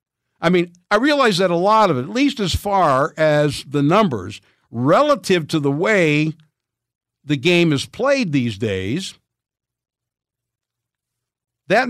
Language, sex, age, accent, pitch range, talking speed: English, male, 60-79, American, 125-180 Hz, 135 wpm